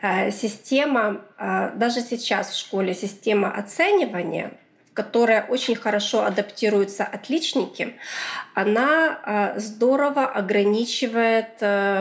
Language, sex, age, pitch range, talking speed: Russian, female, 20-39, 210-280 Hz, 75 wpm